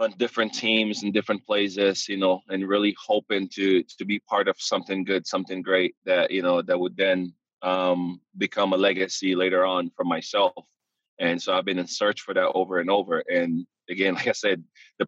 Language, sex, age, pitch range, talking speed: English, male, 20-39, 95-105 Hz, 205 wpm